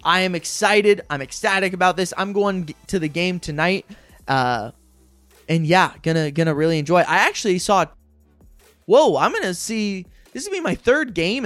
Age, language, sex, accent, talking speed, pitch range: 20-39, English, male, American, 185 wpm, 150-205 Hz